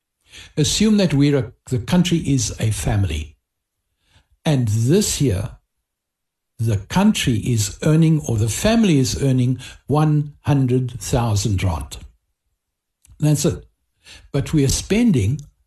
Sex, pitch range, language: male, 100-150 Hz, English